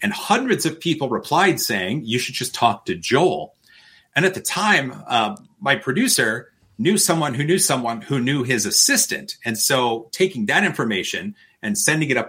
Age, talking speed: 30-49, 180 wpm